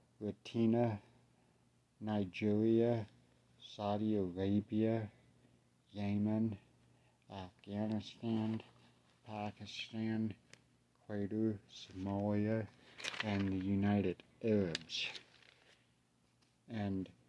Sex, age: male, 60-79